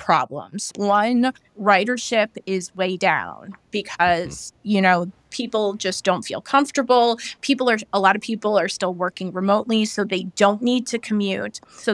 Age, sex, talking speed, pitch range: 30-49, female, 155 wpm, 190-225 Hz